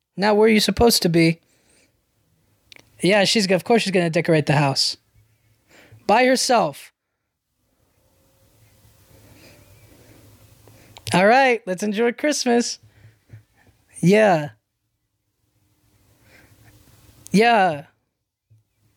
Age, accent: 20-39, American